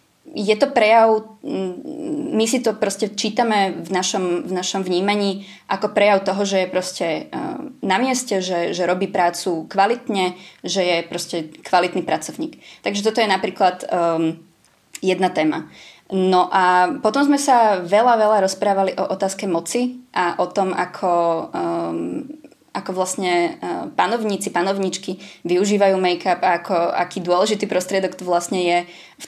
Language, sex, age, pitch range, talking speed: Czech, female, 20-39, 175-205 Hz, 140 wpm